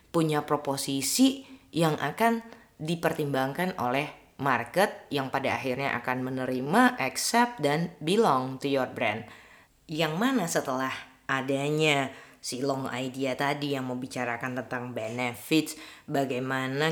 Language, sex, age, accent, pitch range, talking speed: Indonesian, female, 20-39, native, 130-155 Hz, 115 wpm